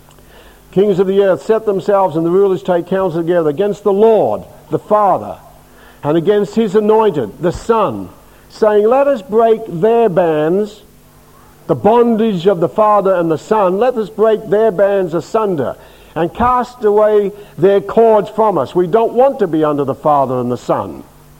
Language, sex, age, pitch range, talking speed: English, male, 60-79, 160-210 Hz, 170 wpm